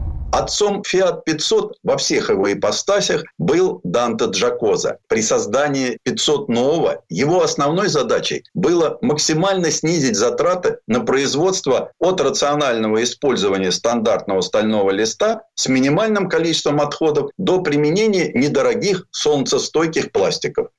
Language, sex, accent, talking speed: Russian, male, native, 110 wpm